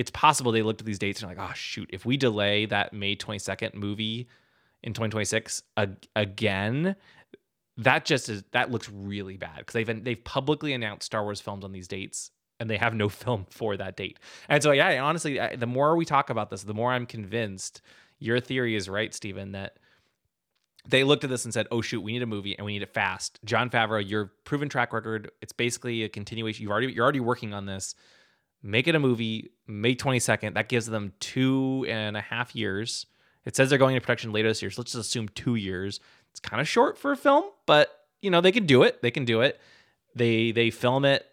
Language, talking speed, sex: English, 230 wpm, male